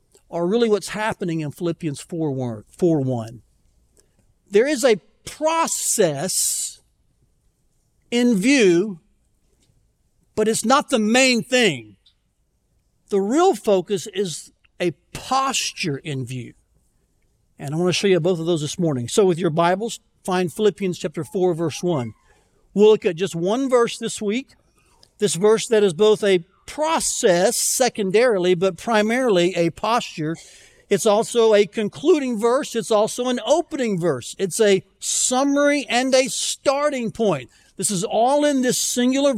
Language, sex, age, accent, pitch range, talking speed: English, male, 60-79, American, 170-230 Hz, 140 wpm